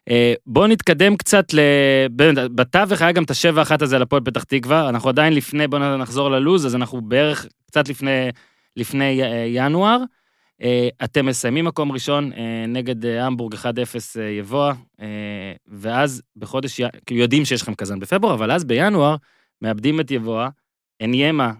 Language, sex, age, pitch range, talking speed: Hebrew, male, 20-39, 125-175 Hz, 135 wpm